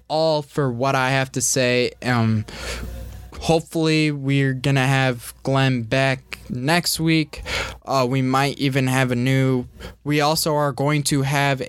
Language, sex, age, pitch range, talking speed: English, male, 20-39, 120-145 Hz, 150 wpm